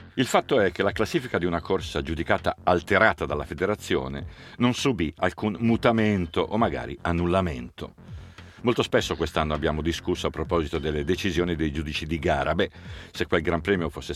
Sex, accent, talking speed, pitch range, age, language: male, native, 165 wpm, 80-105 Hz, 50-69, Italian